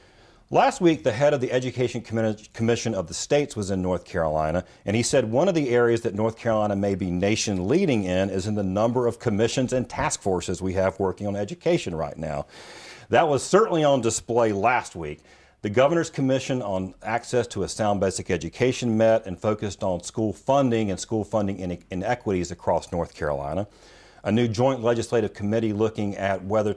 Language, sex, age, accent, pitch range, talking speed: English, male, 40-59, American, 95-115 Hz, 185 wpm